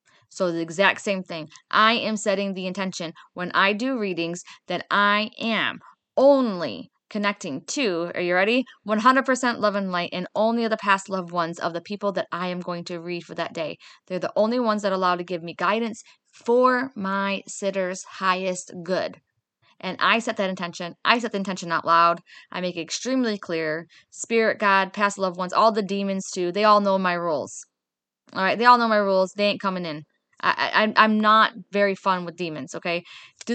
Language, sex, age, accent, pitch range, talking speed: English, female, 20-39, American, 180-230 Hz, 200 wpm